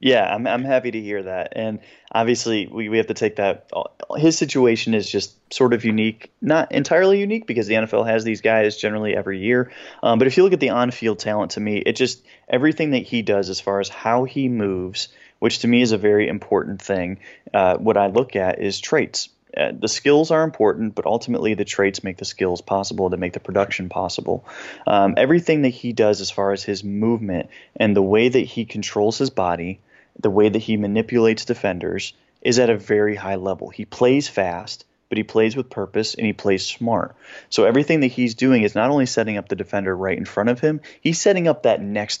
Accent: American